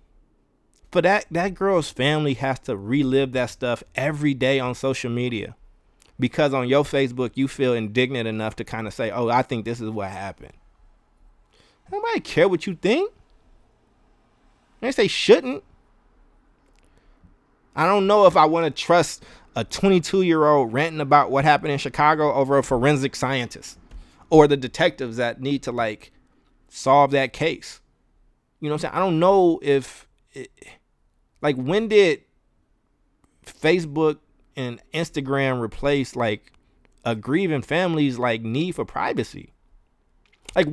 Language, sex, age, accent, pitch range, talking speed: English, male, 20-39, American, 115-155 Hz, 145 wpm